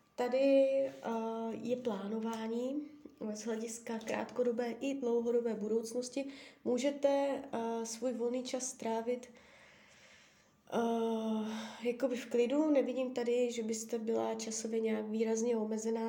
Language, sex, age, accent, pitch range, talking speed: Czech, female, 20-39, native, 225-255 Hz, 110 wpm